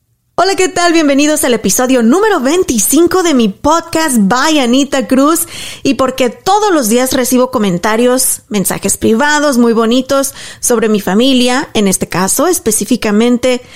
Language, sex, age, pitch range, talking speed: Spanish, female, 30-49, 230-300 Hz, 140 wpm